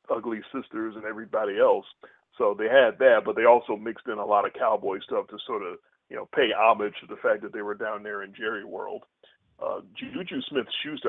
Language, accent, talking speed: English, American, 220 wpm